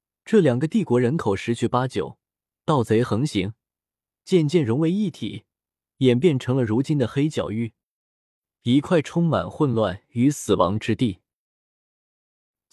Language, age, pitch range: Chinese, 20-39, 105-155 Hz